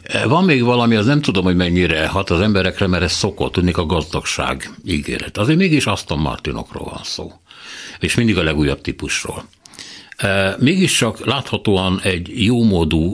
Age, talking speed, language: 60-79, 150 wpm, Hungarian